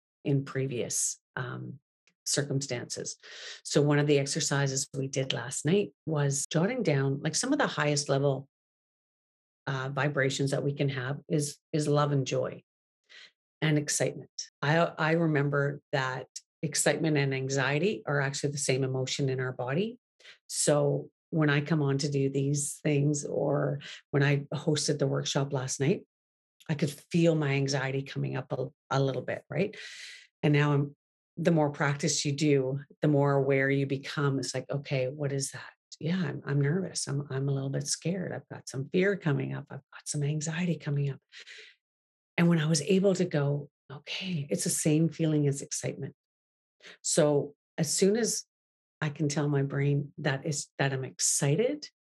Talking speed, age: 170 wpm, 40-59